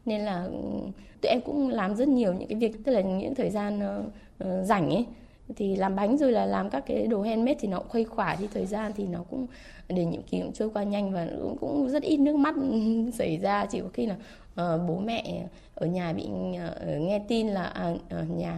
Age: 20-39